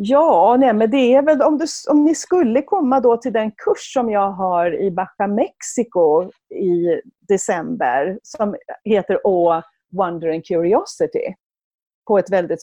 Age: 40-59